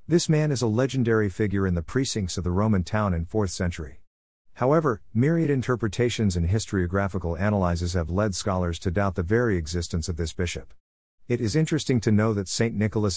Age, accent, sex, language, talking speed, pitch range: 50-69, American, male, English, 185 wpm, 85-115 Hz